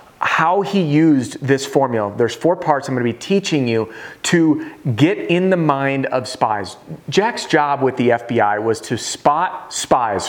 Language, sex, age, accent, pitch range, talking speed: English, male, 40-59, American, 130-180 Hz, 170 wpm